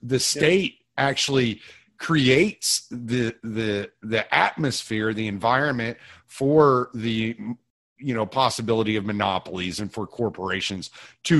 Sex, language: male, English